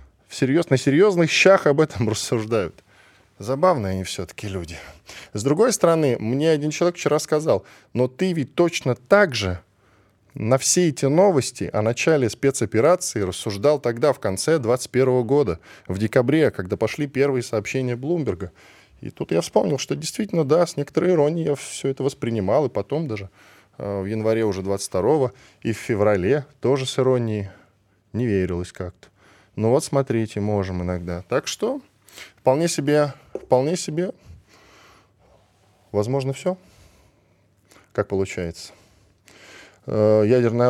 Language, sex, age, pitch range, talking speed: Russian, male, 10-29, 100-145 Hz, 135 wpm